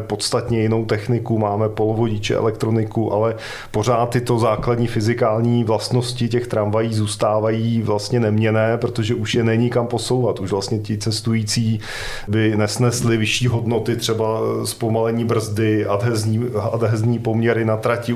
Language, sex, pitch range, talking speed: Czech, male, 110-120 Hz, 130 wpm